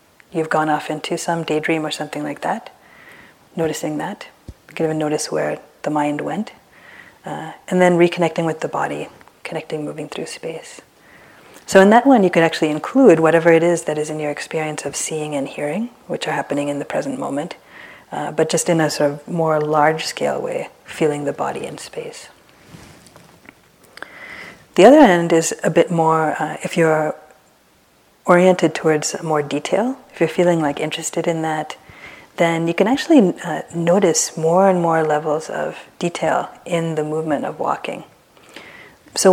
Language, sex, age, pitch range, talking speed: English, female, 30-49, 155-180 Hz, 170 wpm